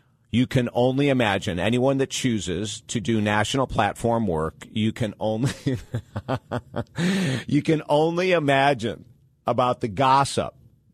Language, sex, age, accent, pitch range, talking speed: English, male, 50-69, American, 100-130 Hz, 120 wpm